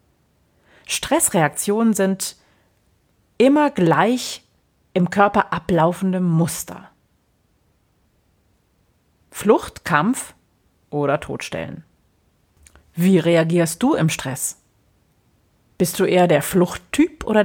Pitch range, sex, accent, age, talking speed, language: 150-195 Hz, female, German, 40-59, 80 wpm, German